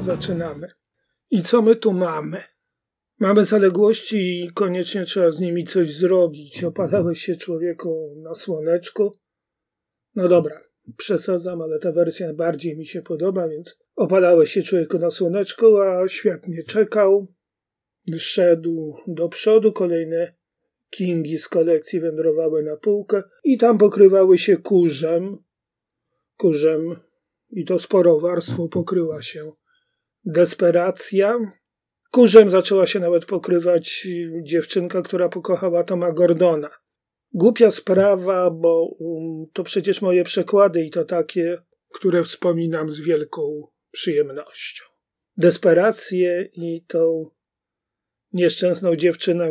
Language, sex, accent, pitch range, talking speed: Polish, male, native, 165-195 Hz, 110 wpm